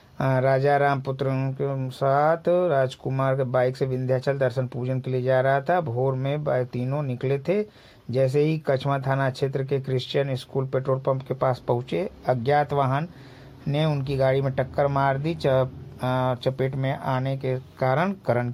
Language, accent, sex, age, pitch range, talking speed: Hindi, native, male, 50-69, 125-140 Hz, 160 wpm